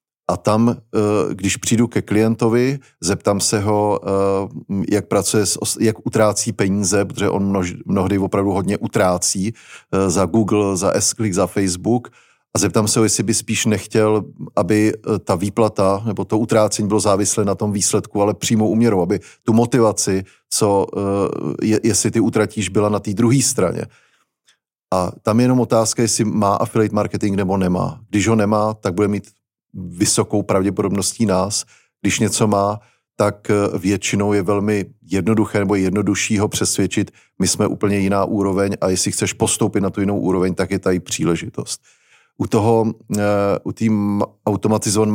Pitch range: 100-110 Hz